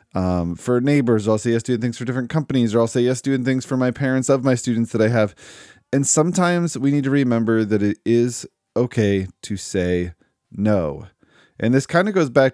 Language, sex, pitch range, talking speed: English, male, 105-130 Hz, 215 wpm